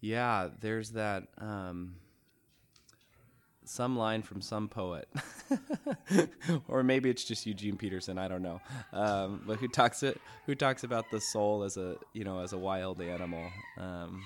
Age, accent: 20-39, American